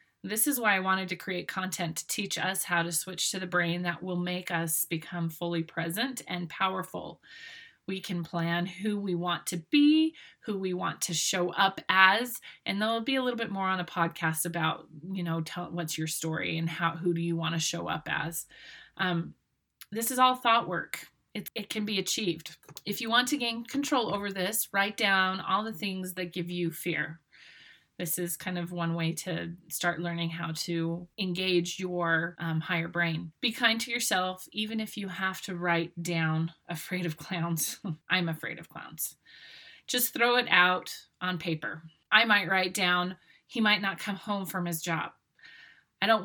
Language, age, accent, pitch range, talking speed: English, 30-49, American, 170-210 Hz, 195 wpm